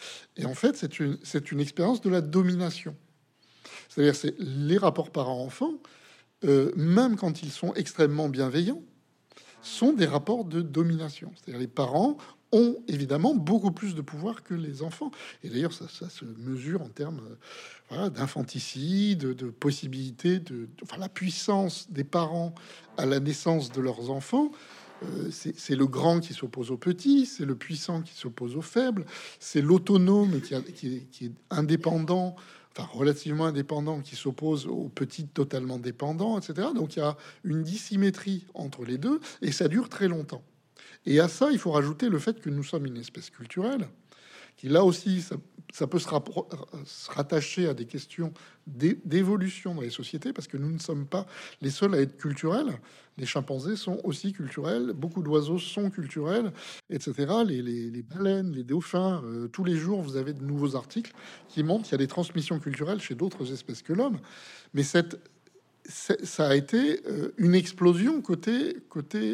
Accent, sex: French, male